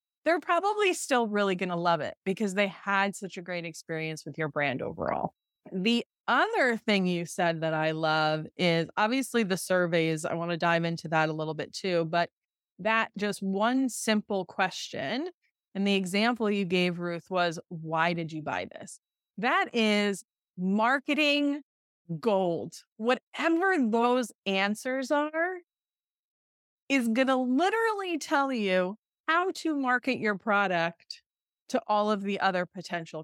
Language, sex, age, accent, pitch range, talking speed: English, female, 30-49, American, 175-230 Hz, 150 wpm